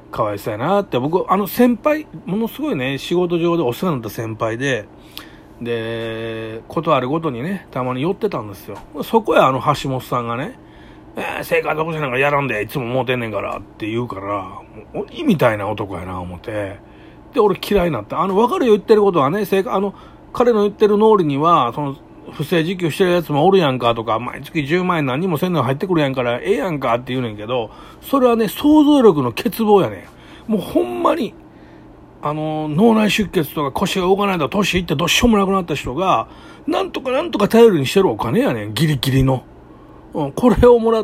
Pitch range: 125-195 Hz